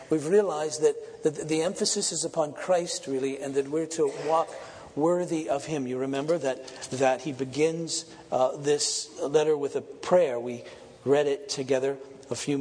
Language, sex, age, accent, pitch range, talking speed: English, male, 50-69, American, 135-165 Hz, 165 wpm